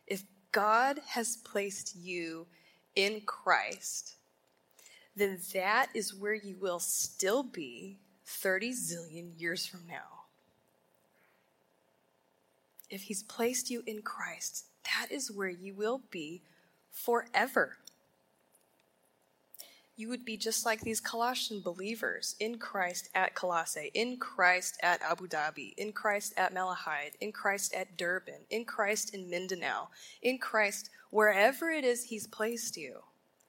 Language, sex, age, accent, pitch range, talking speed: English, female, 20-39, American, 185-225 Hz, 125 wpm